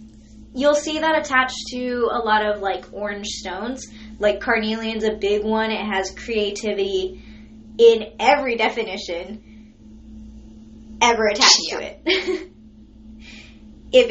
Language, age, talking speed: English, 20-39, 115 wpm